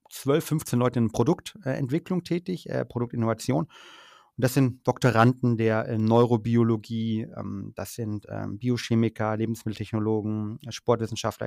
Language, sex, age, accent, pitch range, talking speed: German, male, 30-49, German, 115-135 Hz, 90 wpm